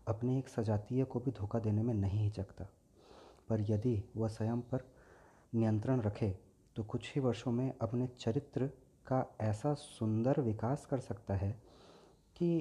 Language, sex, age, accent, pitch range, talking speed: Hindi, female, 30-49, native, 105-140 Hz, 150 wpm